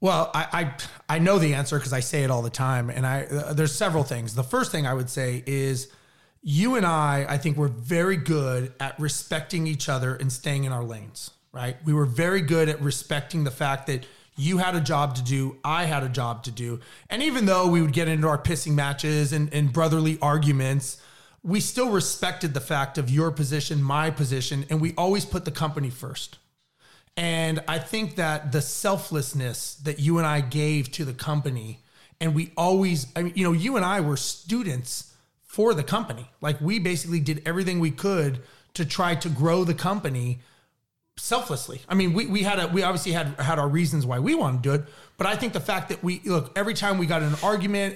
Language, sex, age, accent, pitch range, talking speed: English, male, 30-49, American, 140-175 Hz, 215 wpm